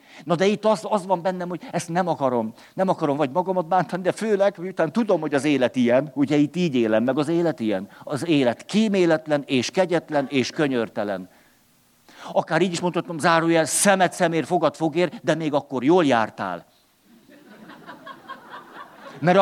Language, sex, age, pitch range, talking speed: Hungarian, male, 50-69, 145-185 Hz, 165 wpm